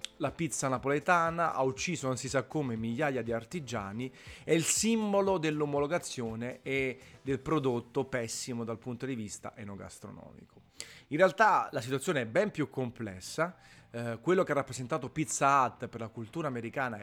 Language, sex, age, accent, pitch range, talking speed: Italian, male, 30-49, native, 115-150 Hz, 155 wpm